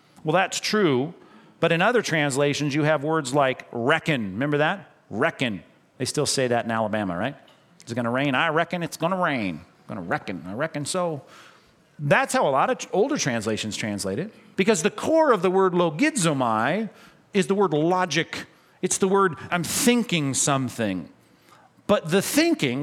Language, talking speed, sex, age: English, 180 wpm, male, 40-59